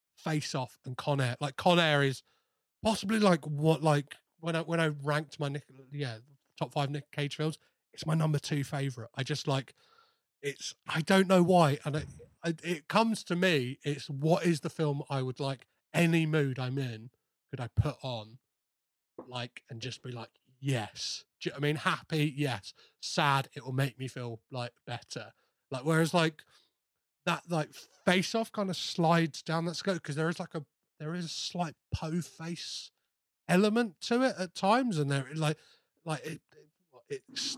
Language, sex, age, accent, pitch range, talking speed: English, male, 30-49, British, 135-170 Hz, 185 wpm